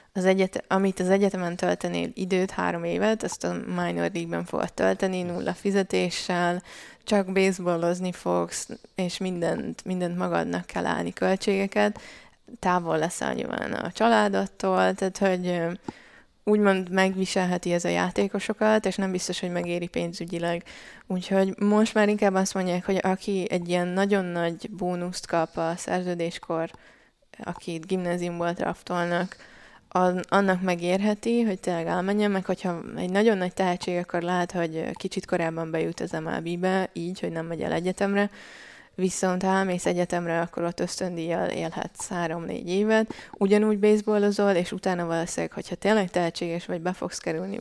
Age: 20-39